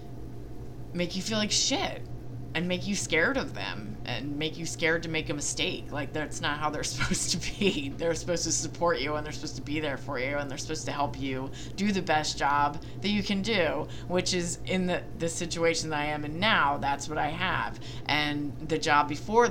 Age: 20-39